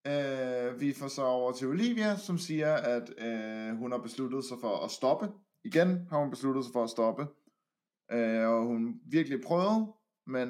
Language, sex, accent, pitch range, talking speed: English, male, Danish, 115-190 Hz, 185 wpm